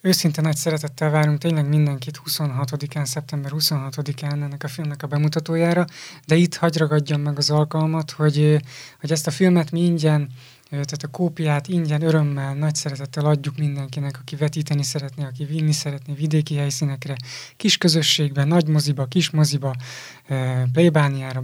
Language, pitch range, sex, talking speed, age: Hungarian, 145-160 Hz, male, 145 wpm, 20-39